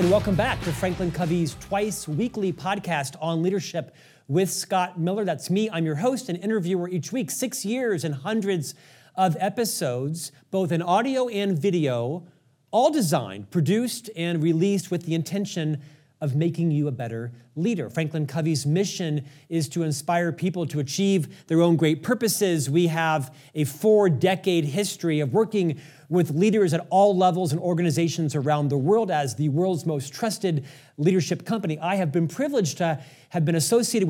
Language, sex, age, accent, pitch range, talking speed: English, male, 40-59, American, 155-195 Hz, 160 wpm